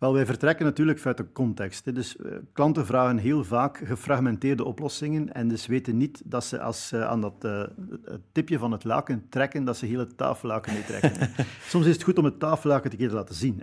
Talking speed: 195 wpm